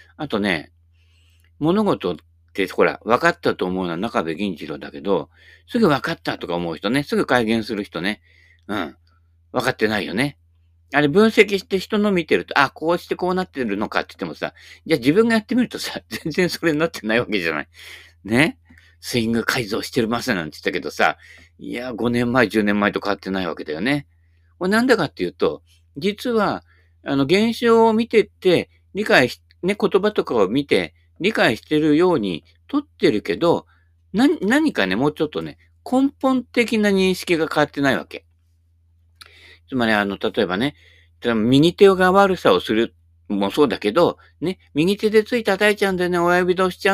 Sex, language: male, Japanese